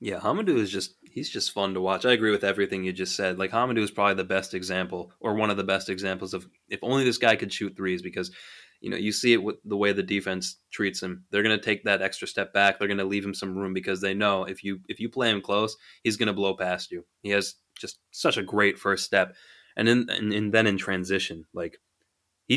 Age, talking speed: 20-39, 245 wpm